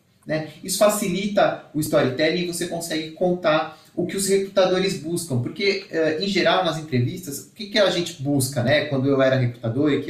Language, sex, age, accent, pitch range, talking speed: Portuguese, male, 30-49, Brazilian, 140-190 Hz, 190 wpm